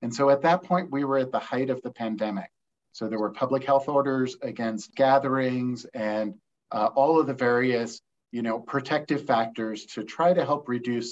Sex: male